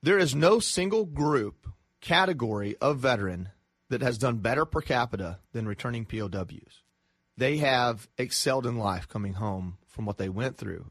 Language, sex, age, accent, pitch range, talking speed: English, male, 30-49, American, 110-140 Hz, 160 wpm